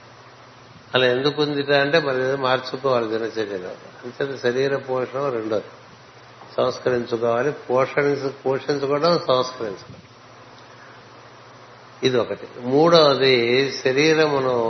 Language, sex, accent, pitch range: Telugu, male, native, 120-135 Hz